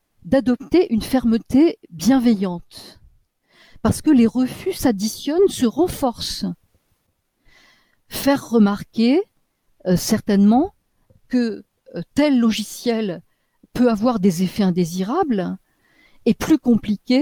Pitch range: 200-275 Hz